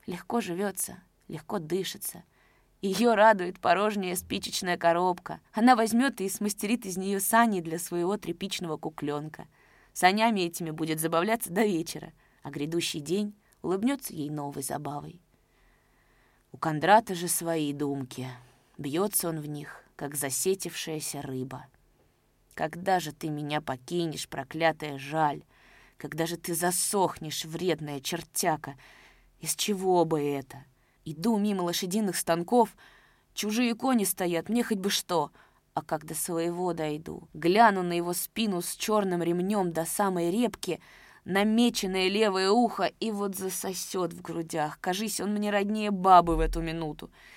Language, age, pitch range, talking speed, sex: Russian, 20-39, 155-195 Hz, 130 wpm, female